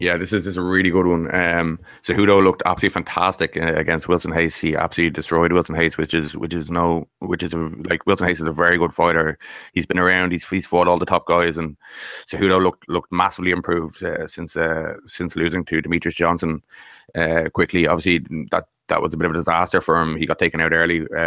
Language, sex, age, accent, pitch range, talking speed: English, male, 20-39, Irish, 85-95 Hz, 235 wpm